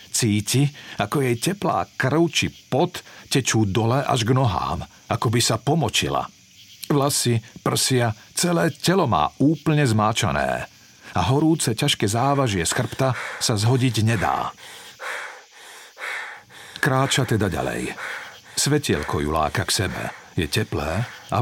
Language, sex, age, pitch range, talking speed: Slovak, male, 50-69, 110-140 Hz, 120 wpm